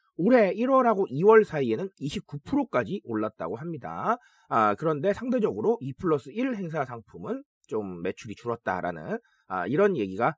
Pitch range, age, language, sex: 155-235 Hz, 30-49, Korean, male